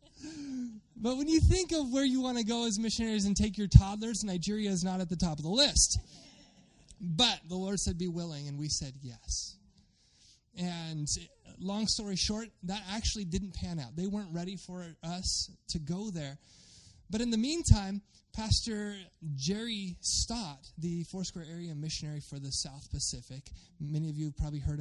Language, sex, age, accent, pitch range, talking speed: English, male, 20-39, American, 160-235 Hz, 175 wpm